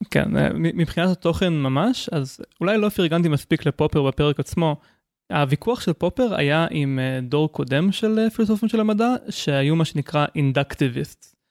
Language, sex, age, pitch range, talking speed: Hebrew, male, 20-39, 140-175 Hz, 140 wpm